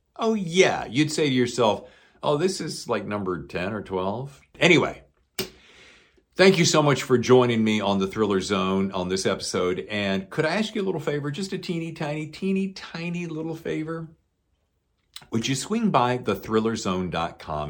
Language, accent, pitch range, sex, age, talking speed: English, American, 90-145 Hz, male, 50-69, 170 wpm